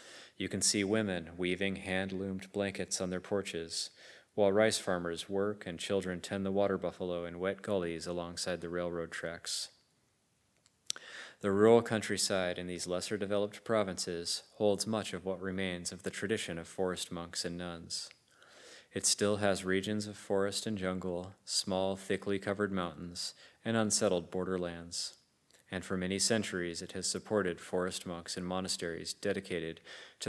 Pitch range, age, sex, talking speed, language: 90-100 Hz, 30-49, male, 150 wpm, English